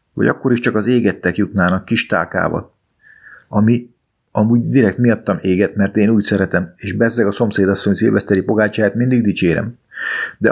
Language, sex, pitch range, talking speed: Hungarian, male, 95-115 Hz, 155 wpm